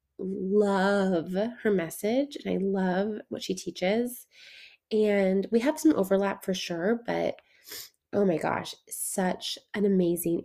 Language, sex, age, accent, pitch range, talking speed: English, female, 20-39, American, 185-225 Hz, 130 wpm